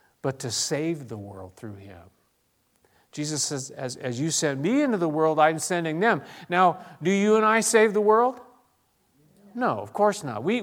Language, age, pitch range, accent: English, 50-69, 165-215 Hz, American